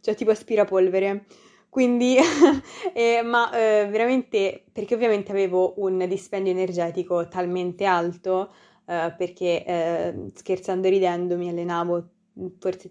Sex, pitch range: female, 180-210 Hz